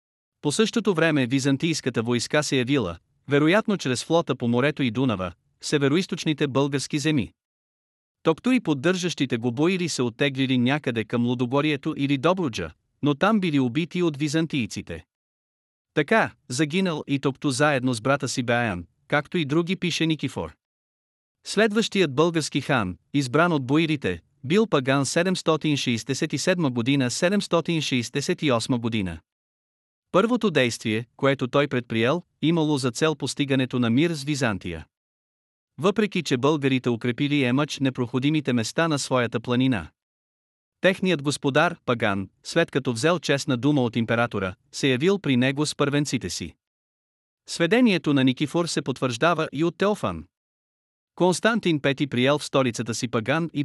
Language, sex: Bulgarian, male